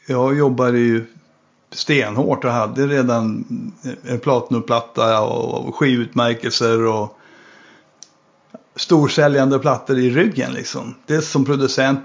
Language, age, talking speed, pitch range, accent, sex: Swedish, 60-79, 105 wpm, 120-140 Hz, native, male